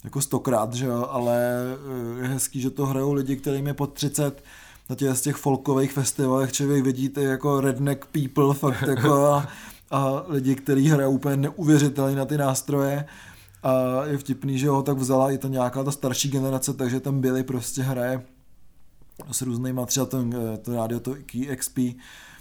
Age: 20-39